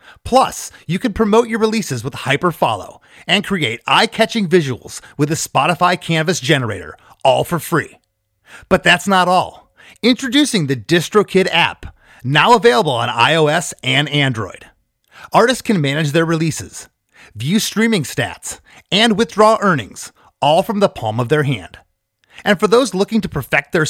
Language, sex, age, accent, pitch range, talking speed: English, male, 30-49, American, 145-210 Hz, 150 wpm